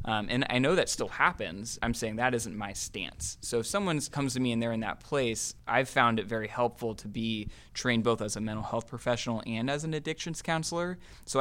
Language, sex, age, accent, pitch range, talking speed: English, male, 20-39, American, 110-130 Hz, 230 wpm